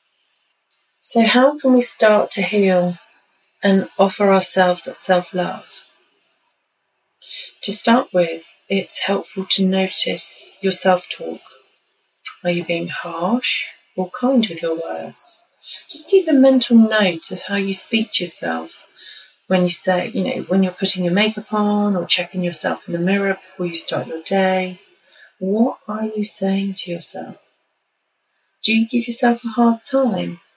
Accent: British